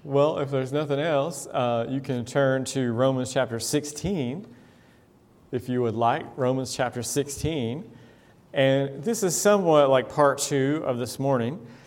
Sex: male